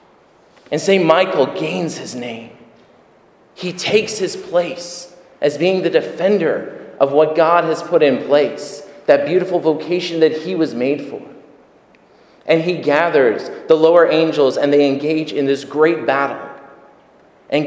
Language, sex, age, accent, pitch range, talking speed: English, male, 40-59, American, 125-155 Hz, 145 wpm